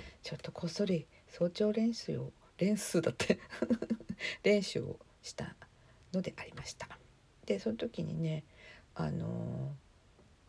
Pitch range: 145-205 Hz